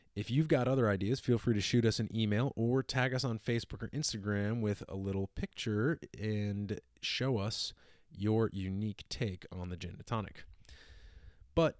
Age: 30-49